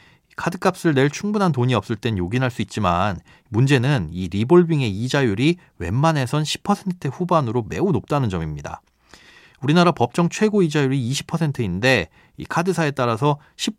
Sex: male